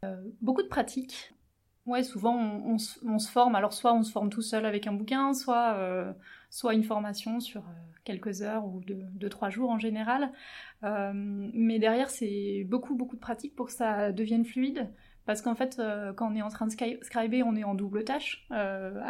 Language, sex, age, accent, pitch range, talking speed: French, female, 30-49, French, 210-245 Hz, 210 wpm